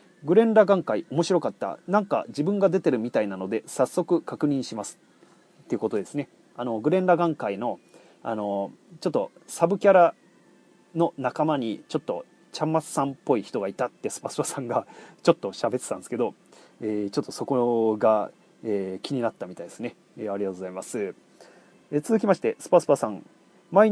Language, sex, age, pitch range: Japanese, male, 30-49, 120-180 Hz